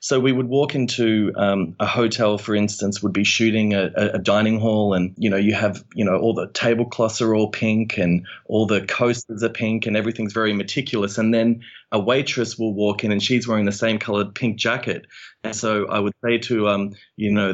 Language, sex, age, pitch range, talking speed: English, male, 20-39, 105-120 Hz, 220 wpm